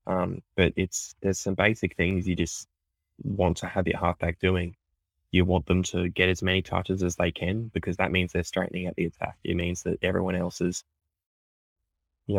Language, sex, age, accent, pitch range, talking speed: English, male, 10-29, Australian, 85-95 Hz, 200 wpm